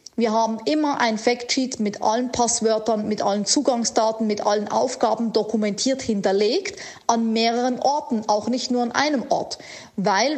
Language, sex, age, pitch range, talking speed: German, female, 40-59, 225-280 Hz, 150 wpm